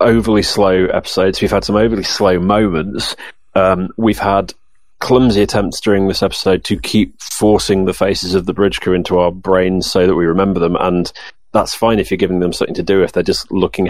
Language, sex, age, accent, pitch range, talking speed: English, male, 30-49, British, 90-105 Hz, 205 wpm